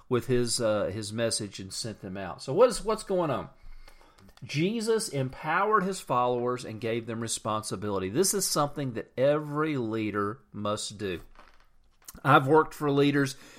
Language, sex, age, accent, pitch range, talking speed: English, male, 40-59, American, 110-145 Hz, 150 wpm